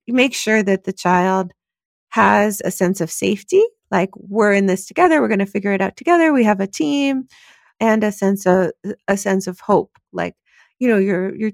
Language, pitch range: English, 185-220 Hz